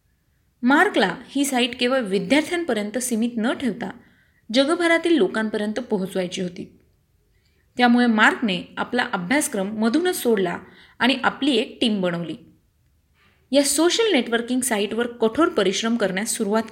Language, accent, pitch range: Marathi, native, 205-270 Hz